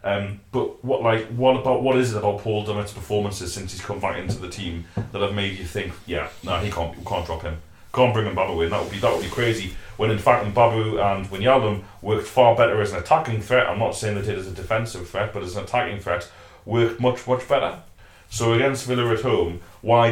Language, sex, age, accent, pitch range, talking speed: English, male, 30-49, British, 95-115 Hz, 245 wpm